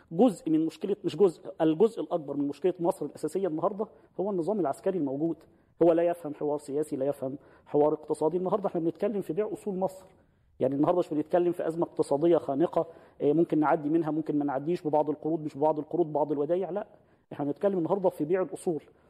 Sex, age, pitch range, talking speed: male, 40-59, 150-175 Hz, 190 wpm